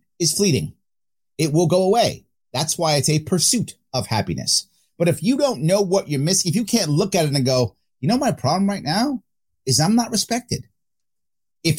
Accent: American